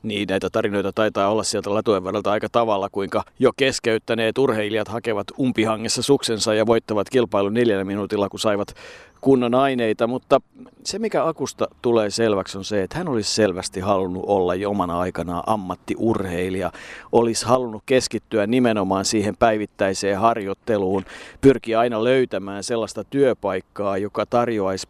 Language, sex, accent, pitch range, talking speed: Finnish, male, native, 100-115 Hz, 135 wpm